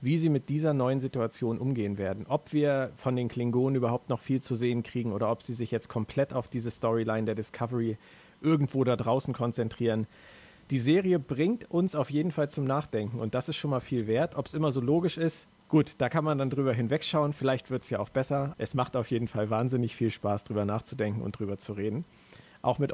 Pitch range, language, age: 115-150 Hz, German, 40-59